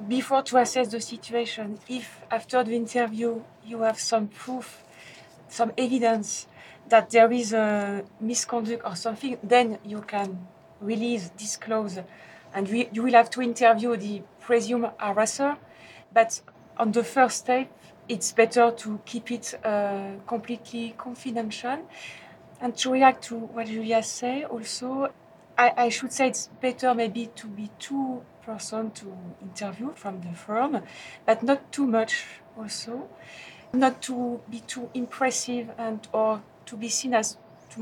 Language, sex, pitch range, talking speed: English, female, 215-250 Hz, 145 wpm